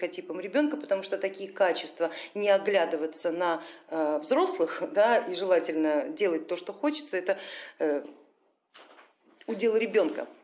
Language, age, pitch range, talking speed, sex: Russian, 40-59, 185-255 Hz, 120 wpm, female